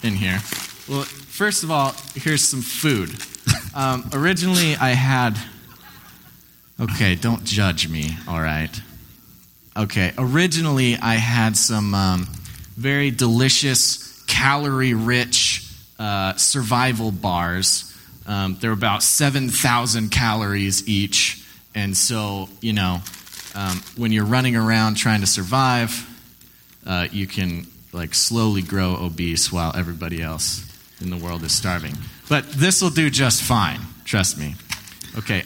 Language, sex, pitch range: English, male, 95-130 Hz